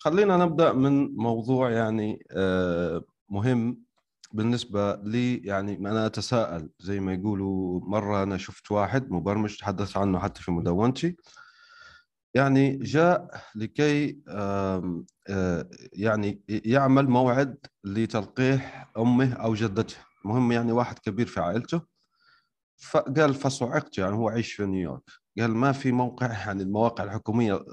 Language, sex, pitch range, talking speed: Arabic, male, 95-135 Hz, 115 wpm